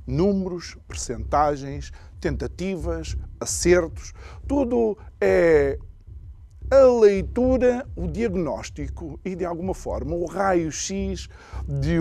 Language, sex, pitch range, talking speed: Portuguese, male, 130-220 Hz, 85 wpm